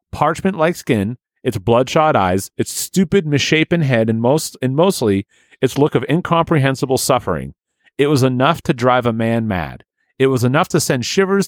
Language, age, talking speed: English, 40-59, 165 wpm